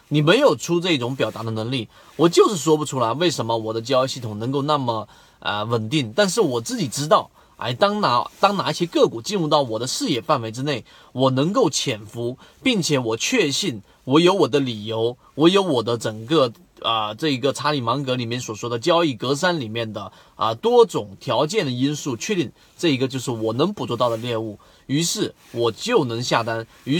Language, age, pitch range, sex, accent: Chinese, 30-49, 115-165 Hz, male, native